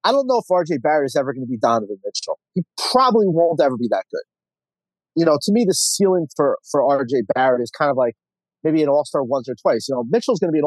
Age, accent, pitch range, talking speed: 30-49, American, 135-175 Hz, 260 wpm